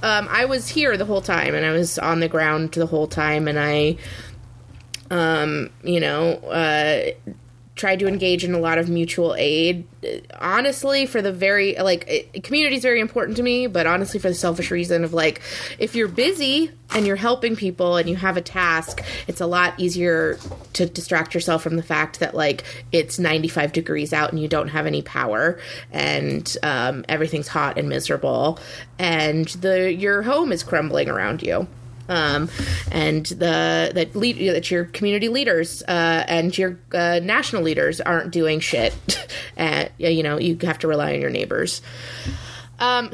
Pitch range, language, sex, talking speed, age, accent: 155-205 Hz, English, female, 180 wpm, 20-39, American